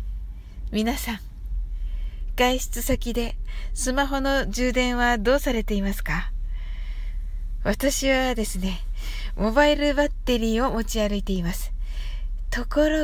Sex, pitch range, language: female, 215-275 Hz, Japanese